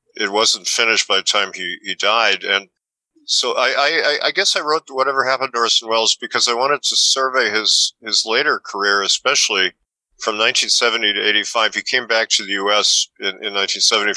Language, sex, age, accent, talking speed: English, male, 50-69, American, 190 wpm